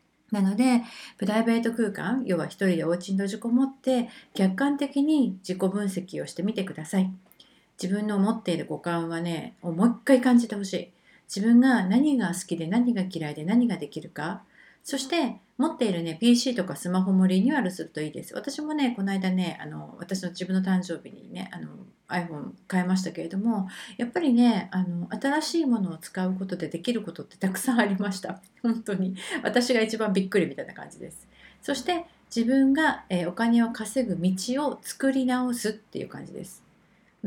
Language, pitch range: Japanese, 185-245 Hz